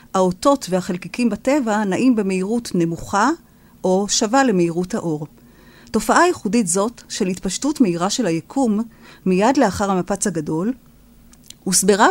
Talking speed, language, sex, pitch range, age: 115 wpm, Hebrew, female, 175-240 Hz, 40-59